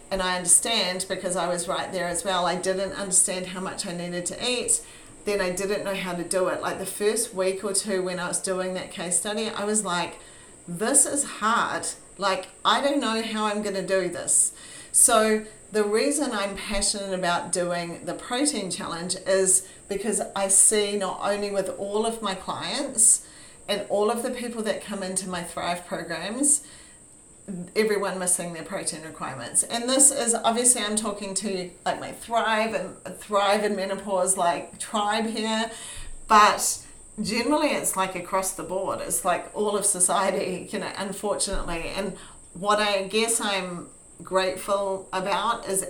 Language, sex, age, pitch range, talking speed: English, female, 40-59, 180-210 Hz, 175 wpm